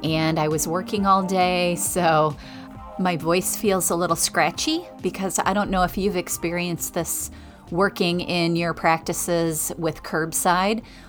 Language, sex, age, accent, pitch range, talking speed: English, female, 30-49, American, 160-185 Hz, 145 wpm